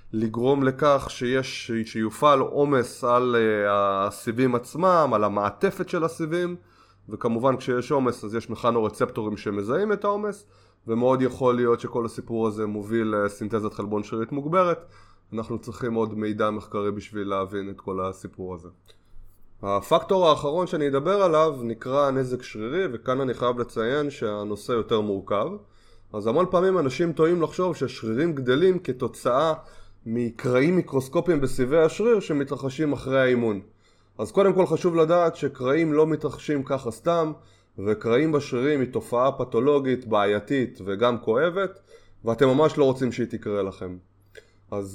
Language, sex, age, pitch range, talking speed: Hebrew, male, 20-39, 105-150 Hz, 130 wpm